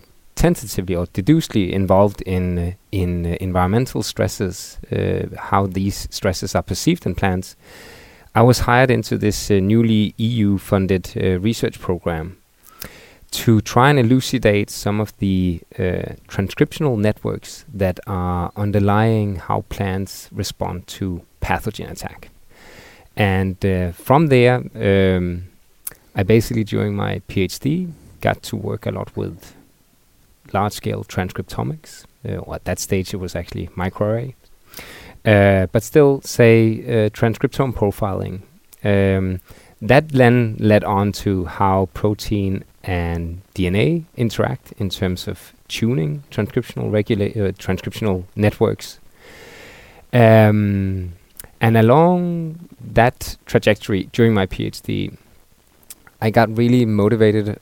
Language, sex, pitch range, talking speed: English, male, 95-115 Hz, 120 wpm